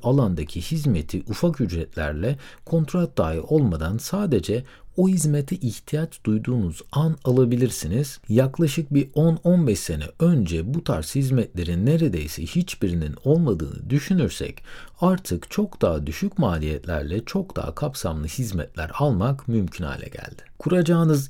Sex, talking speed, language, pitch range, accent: male, 115 wpm, Turkish, 90-145 Hz, native